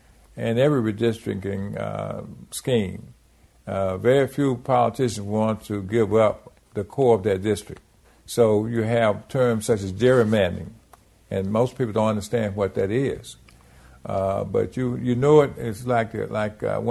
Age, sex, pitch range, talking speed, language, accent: 50-69, male, 95-115 Hz, 155 wpm, English, American